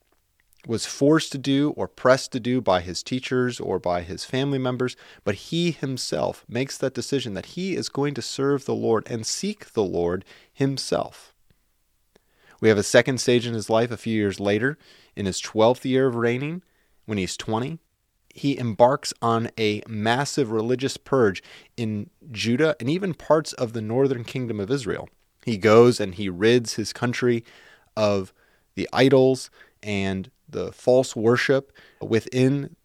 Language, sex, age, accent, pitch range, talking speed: English, male, 30-49, American, 105-135 Hz, 165 wpm